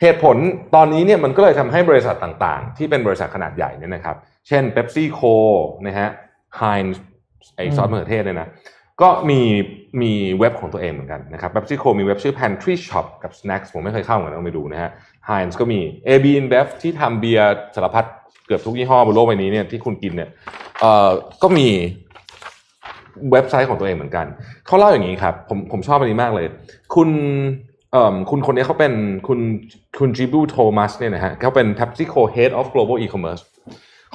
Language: Thai